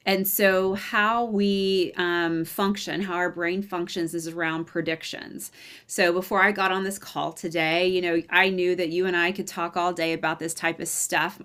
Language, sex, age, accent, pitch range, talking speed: English, female, 30-49, American, 175-205 Hz, 200 wpm